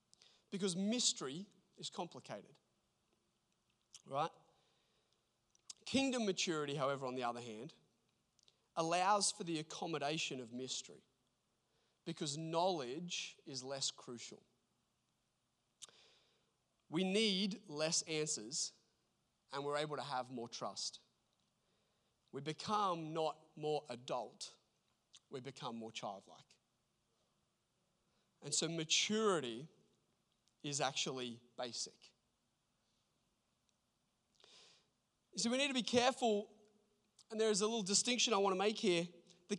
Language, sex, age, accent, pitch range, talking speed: English, male, 30-49, Australian, 155-230 Hz, 100 wpm